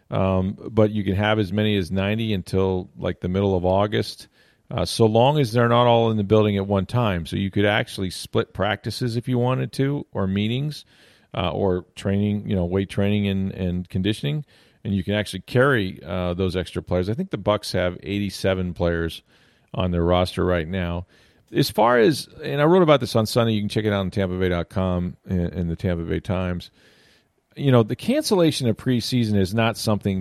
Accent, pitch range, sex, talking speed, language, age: American, 90-115 Hz, male, 205 wpm, English, 40-59